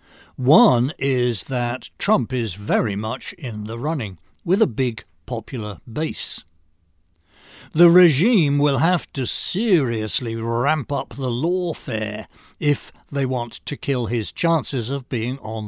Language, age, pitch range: English, 60-79, 105-150 Hz